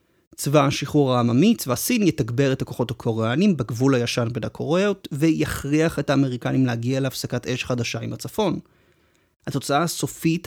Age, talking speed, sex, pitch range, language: 30-49, 140 wpm, male, 125-165 Hz, Hebrew